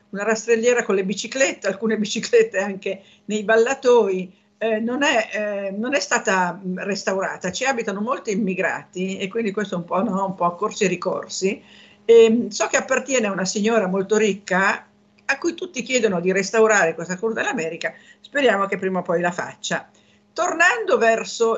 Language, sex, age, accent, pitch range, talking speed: Italian, female, 50-69, native, 185-230 Hz, 155 wpm